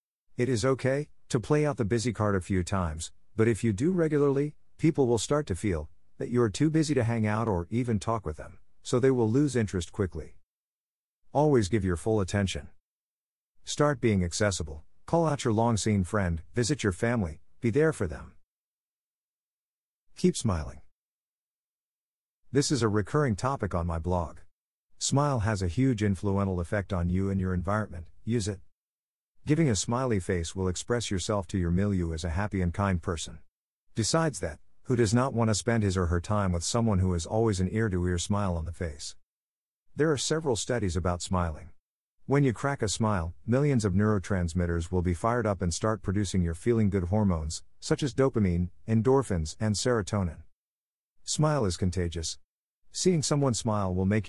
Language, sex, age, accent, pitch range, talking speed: English, male, 50-69, American, 90-120 Hz, 180 wpm